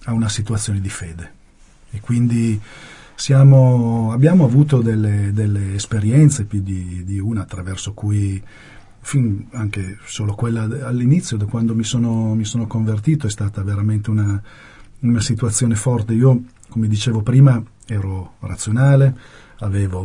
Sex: male